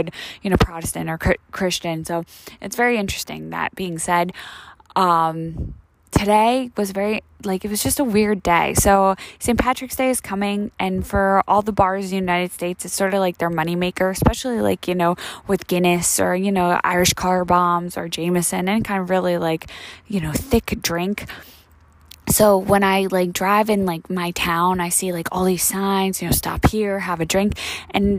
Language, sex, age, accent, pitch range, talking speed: English, female, 20-39, American, 170-195 Hz, 195 wpm